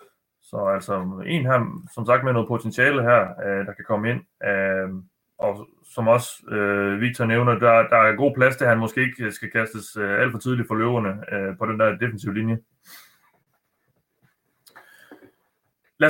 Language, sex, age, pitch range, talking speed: Danish, male, 30-49, 105-135 Hz, 155 wpm